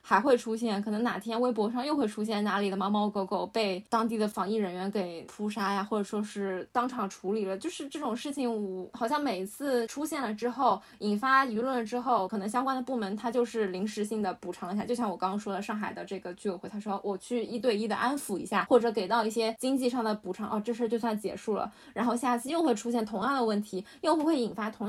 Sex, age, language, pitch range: female, 10-29, Chinese, 200-245 Hz